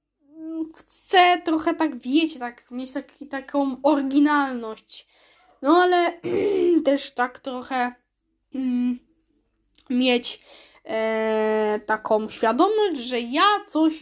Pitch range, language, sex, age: 250-310 Hz, Polish, female, 10-29